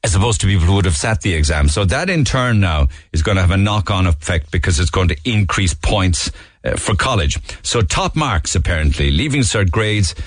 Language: English